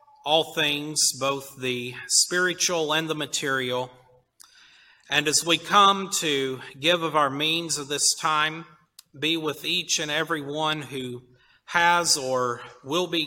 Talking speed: 140 wpm